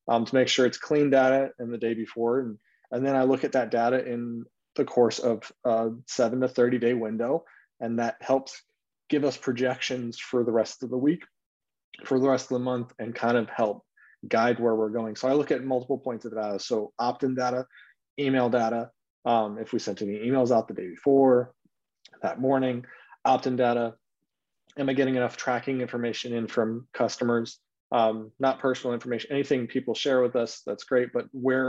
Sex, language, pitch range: male, English, 115-130 Hz